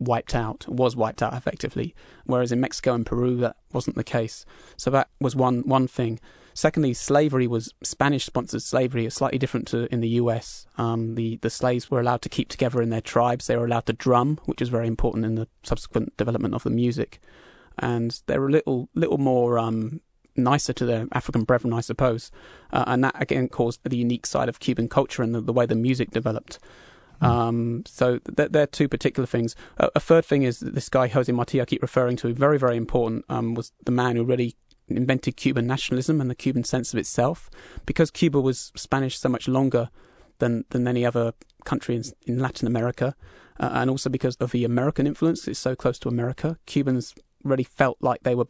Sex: male